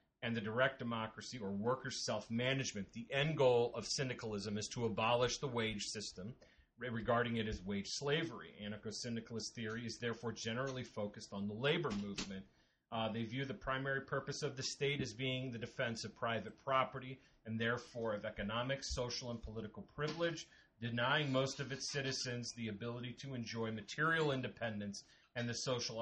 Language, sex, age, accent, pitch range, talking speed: English, male, 30-49, American, 110-130 Hz, 165 wpm